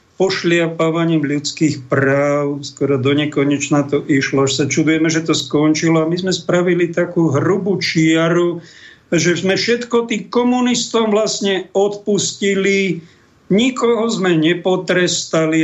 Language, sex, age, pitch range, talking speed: Slovak, male, 50-69, 155-185 Hz, 120 wpm